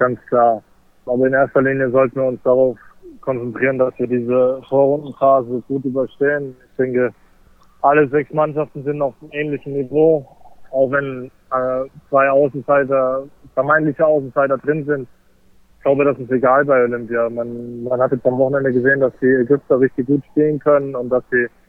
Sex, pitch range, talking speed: male, 125-145 Hz, 165 wpm